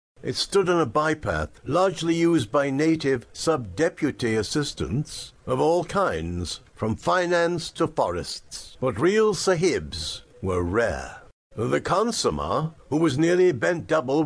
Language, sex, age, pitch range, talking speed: English, male, 60-79, 120-165 Hz, 125 wpm